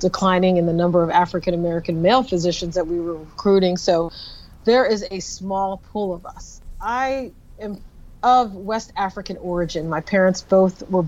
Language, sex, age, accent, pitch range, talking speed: English, female, 40-59, American, 180-220 Hz, 160 wpm